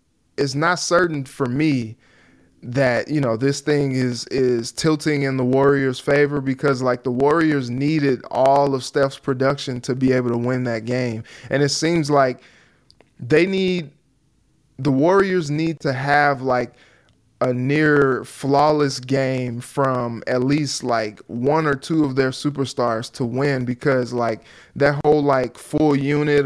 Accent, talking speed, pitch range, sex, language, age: American, 160 wpm, 130-145 Hz, male, English, 20-39